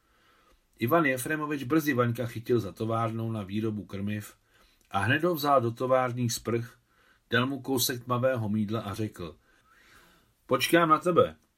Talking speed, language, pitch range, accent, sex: 140 wpm, Czech, 105-130 Hz, native, male